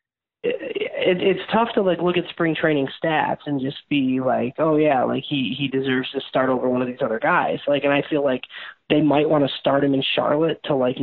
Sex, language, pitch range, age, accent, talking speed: male, English, 135-170 Hz, 20-39, American, 230 wpm